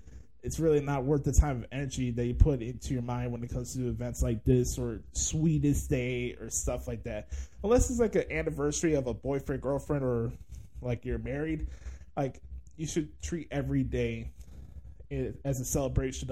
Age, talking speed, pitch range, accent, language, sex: 20-39, 185 wpm, 110-145 Hz, American, English, male